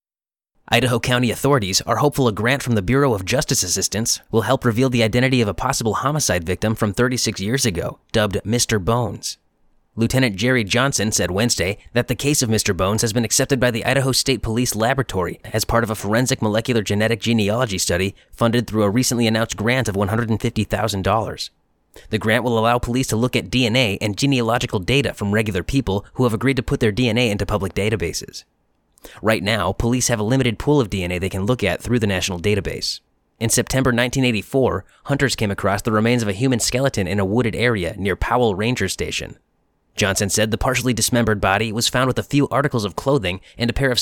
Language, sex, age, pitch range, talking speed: English, male, 30-49, 105-125 Hz, 200 wpm